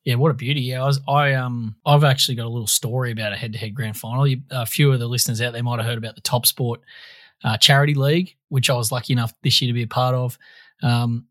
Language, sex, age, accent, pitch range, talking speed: English, male, 20-39, Australian, 120-140 Hz, 270 wpm